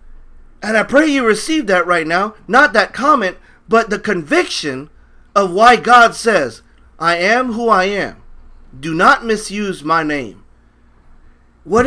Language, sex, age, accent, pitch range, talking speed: English, male, 30-49, American, 130-195 Hz, 145 wpm